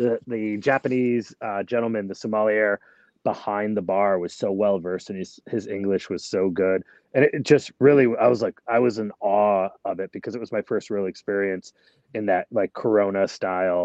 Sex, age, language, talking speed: male, 30-49, English, 205 wpm